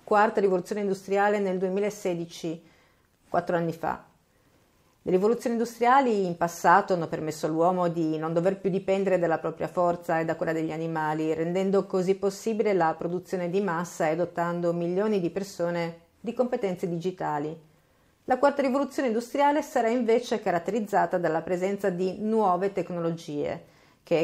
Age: 40-59